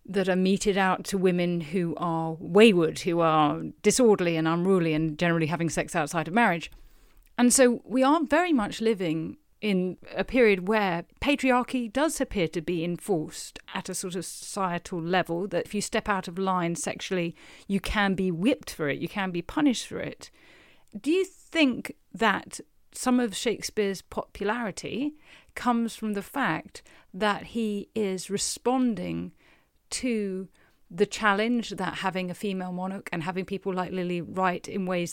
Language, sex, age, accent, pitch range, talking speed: English, female, 40-59, British, 175-220 Hz, 165 wpm